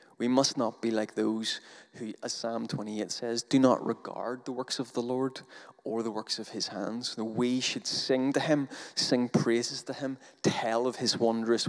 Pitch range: 115-130 Hz